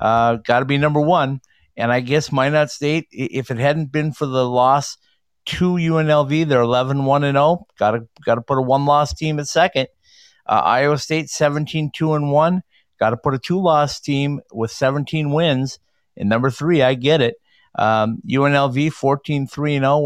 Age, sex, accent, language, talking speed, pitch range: 50-69, male, American, English, 160 wpm, 115-145 Hz